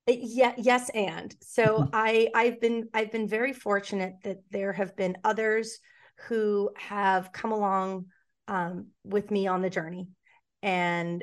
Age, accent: 30-49, American